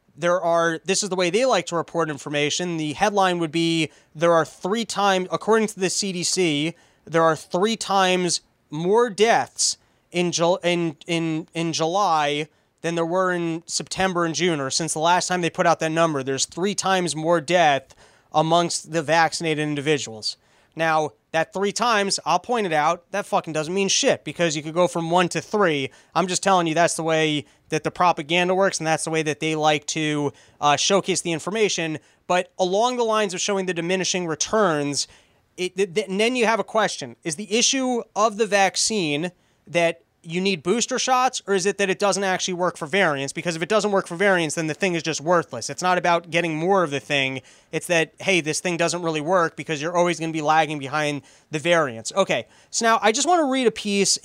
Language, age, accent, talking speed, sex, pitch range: English, 20-39, American, 215 wpm, male, 160-195 Hz